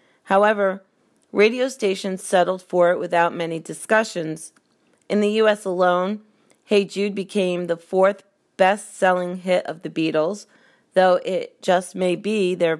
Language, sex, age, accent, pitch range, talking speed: English, female, 30-49, American, 170-200 Hz, 135 wpm